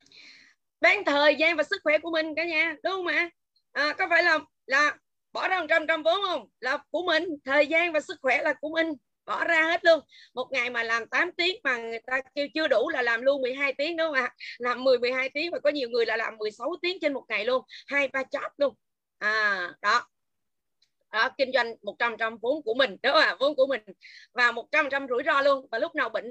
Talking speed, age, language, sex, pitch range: 240 wpm, 20-39, Vietnamese, female, 245-320 Hz